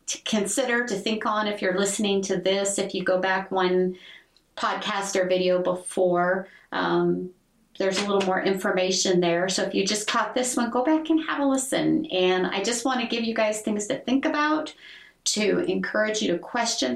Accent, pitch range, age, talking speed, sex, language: American, 190-235 Hz, 40-59, 200 wpm, female, English